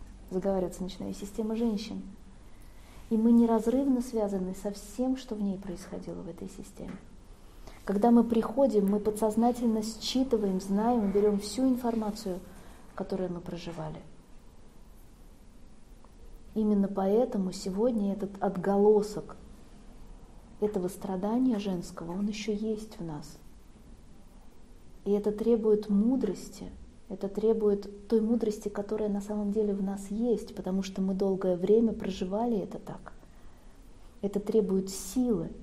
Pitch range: 195-235 Hz